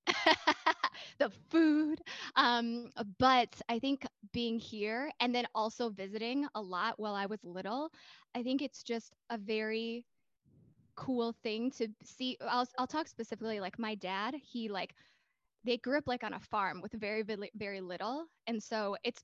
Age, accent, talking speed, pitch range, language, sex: 10-29, American, 160 wpm, 210-255 Hz, English, female